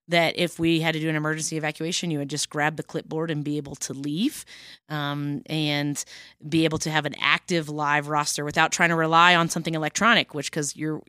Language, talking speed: English, 215 wpm